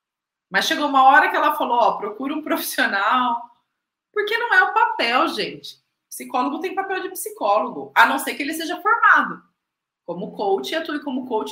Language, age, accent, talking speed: Portuguese, 20-39, Brazilian, 180 wpm